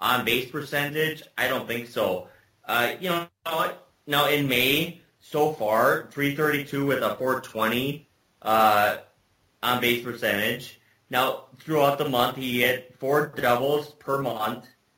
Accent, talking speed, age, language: American, 130 wpm, 30-49, English